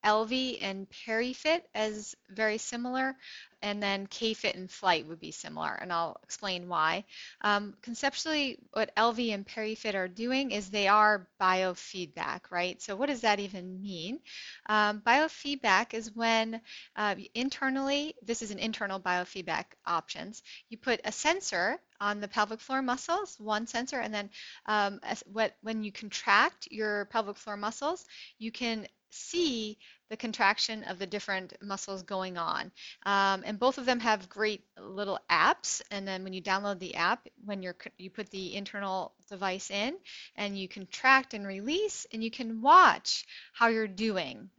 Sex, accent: female, American